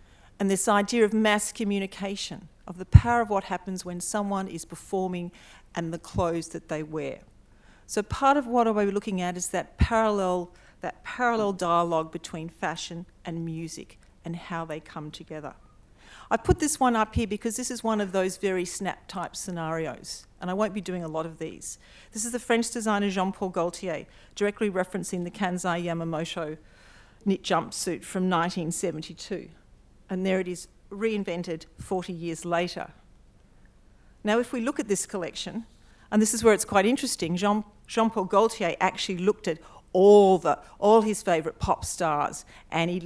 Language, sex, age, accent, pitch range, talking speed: English, female, 40-59, Australian, 170-205 Hz, 165 wpm